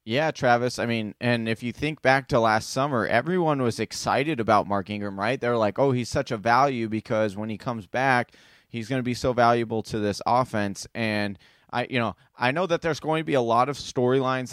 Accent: American